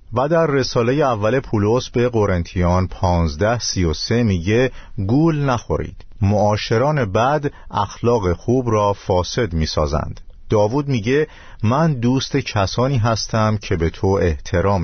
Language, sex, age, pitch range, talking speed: Persian, male, 50-69, 90-125 Hz, 115 wpm